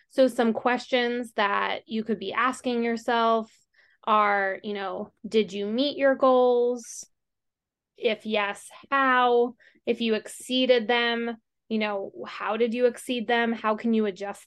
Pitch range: 205-235 Hz